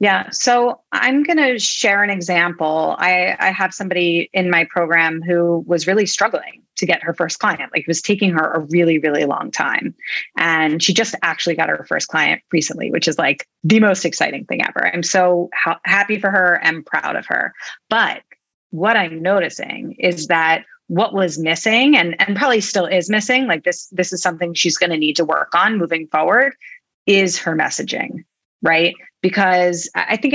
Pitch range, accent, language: 165-215 Hz, American, English